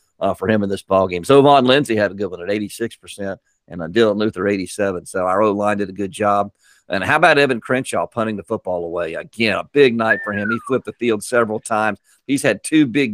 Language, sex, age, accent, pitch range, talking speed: English, male, 50-69, American, 105-135 Hz, 235 wpm